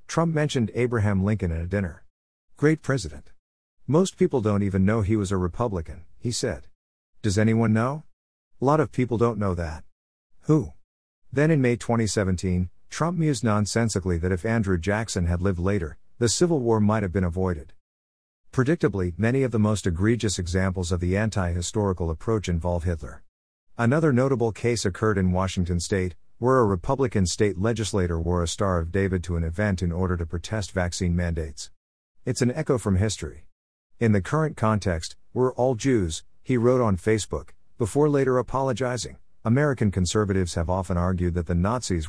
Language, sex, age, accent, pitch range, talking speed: English, male, 50-69, American, 90-115 Hz, 170 wpm